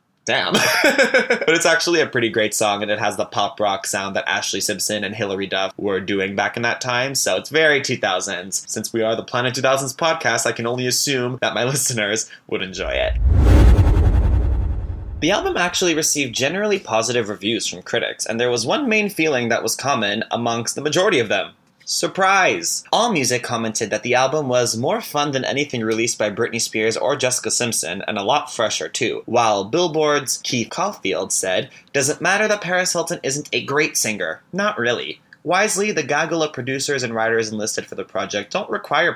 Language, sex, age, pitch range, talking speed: English, male, 20-39, 110-155 Hz, 190 wpm